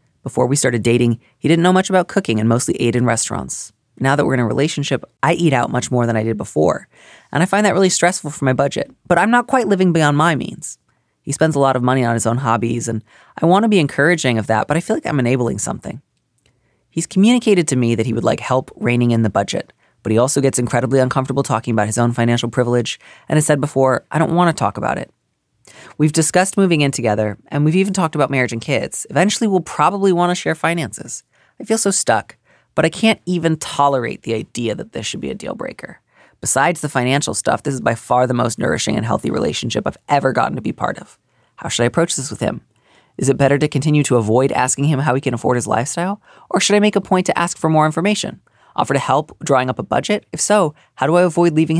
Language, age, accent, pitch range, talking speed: English, 30-49, American, 120-175 Hz, 250 wpm